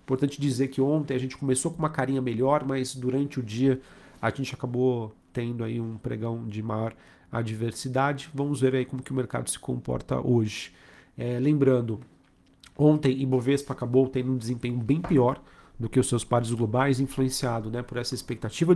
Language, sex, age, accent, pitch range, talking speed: Portuguese, male, 40-59, Brazilian, 120-135 Hz, 175 wpm